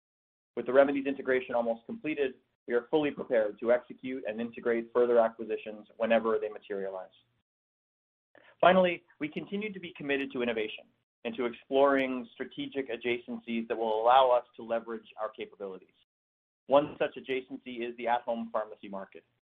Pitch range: 115-135 Hz